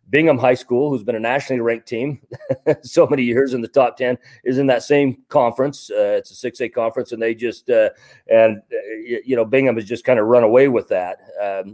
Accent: American